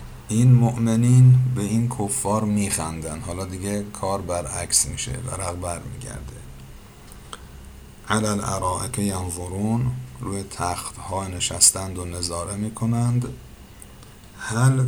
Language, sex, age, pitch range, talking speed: Persian, male, 50-69, 95-110 Hz, 100 wpm